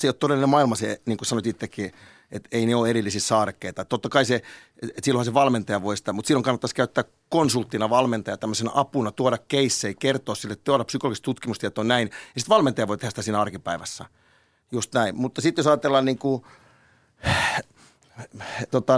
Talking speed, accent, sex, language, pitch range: 185 wpm, native, male, Finnish, 115-140 Hz